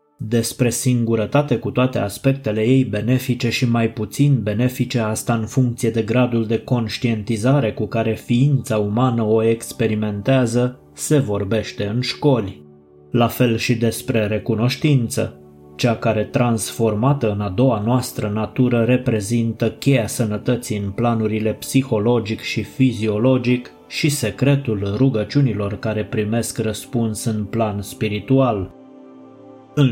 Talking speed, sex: 120 wpm, male